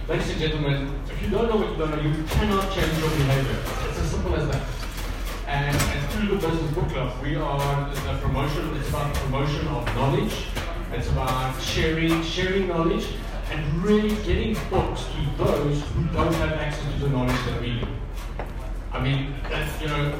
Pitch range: 125-170 Hz